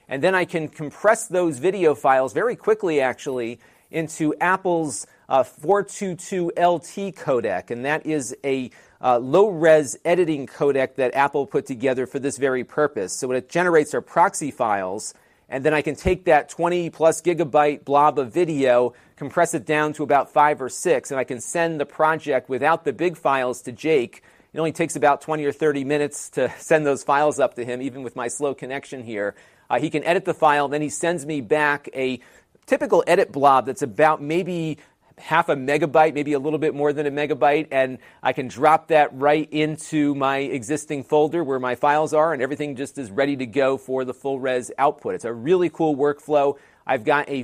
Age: 40-59